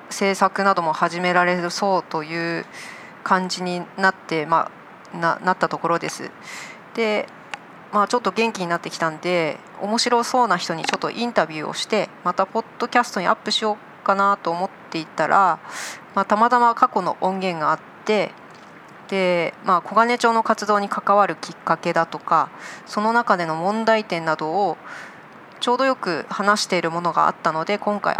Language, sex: Japanese, female